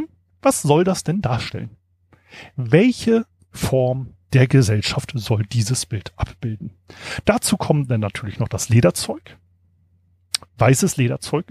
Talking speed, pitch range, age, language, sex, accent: 115 wpm, 105-145 Hz, 40-59, German, male, German